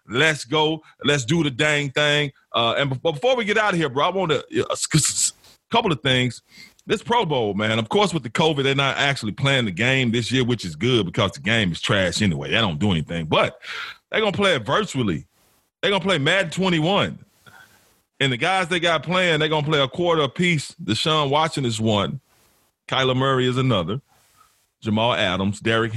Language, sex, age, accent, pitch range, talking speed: English, male, 30-49, American, 115-180 Hz, 205 wpm